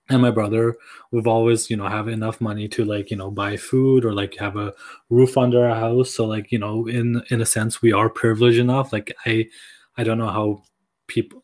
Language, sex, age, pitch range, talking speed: English, male, 20-39, 110-125 Hz, 225 wpm